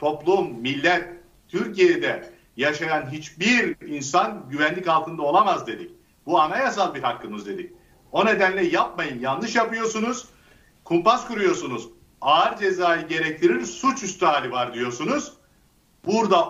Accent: native